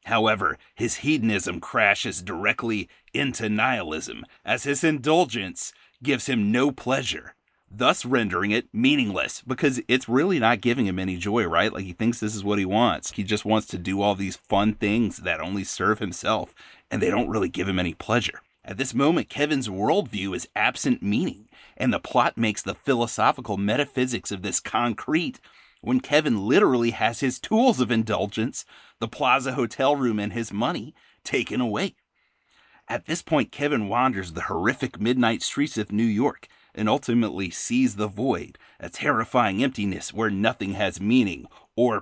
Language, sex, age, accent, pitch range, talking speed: English, male, 30-49, American, 100-125 Hz, 165 wpm